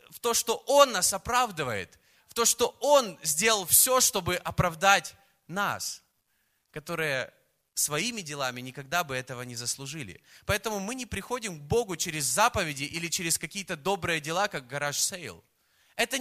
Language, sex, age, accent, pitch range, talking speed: Russian, male, 20-39, native, 160-220 Hz, 145 wpm